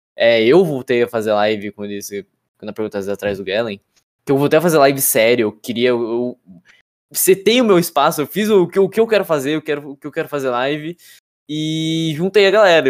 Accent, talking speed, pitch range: Brazilian, 220 wpm, 115-160 Hz